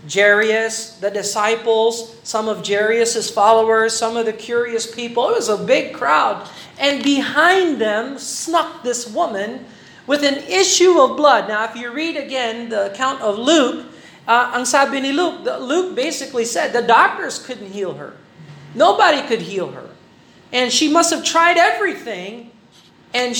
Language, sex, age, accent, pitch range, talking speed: Filipino, male, 40-59, American, 220-290 Hz, 150 wpm